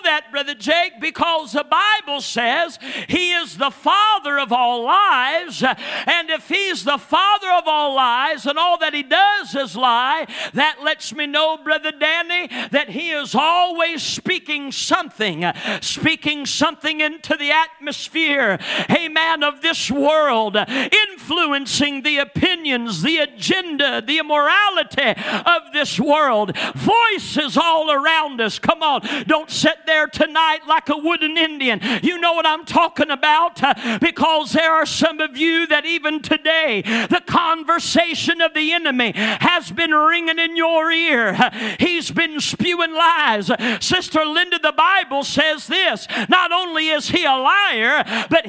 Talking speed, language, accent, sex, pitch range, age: 145 wpm, English, American, male, 275-330 Hz, 50-69